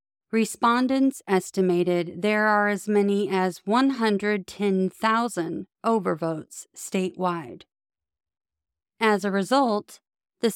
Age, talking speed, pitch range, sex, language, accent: 40-59, 80 wpm, 180-220 Hz, female, English, American